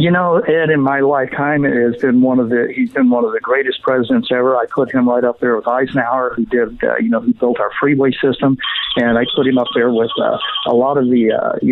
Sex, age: male, 50-69